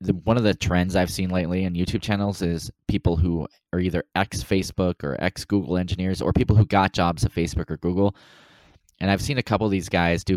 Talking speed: 215 wpm